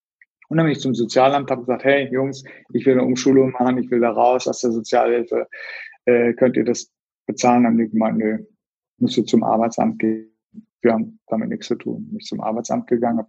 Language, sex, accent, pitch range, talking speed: German, male, German, 120-135 Hz, 220 wpm